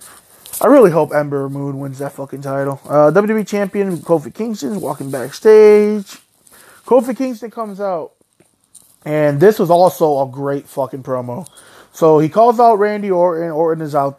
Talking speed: 160 wpm